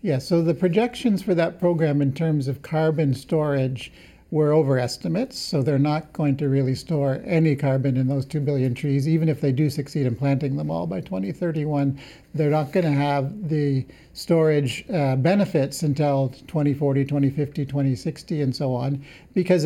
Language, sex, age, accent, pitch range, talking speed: English, male, 50-69, American, 135-165 Hz, 170 wpm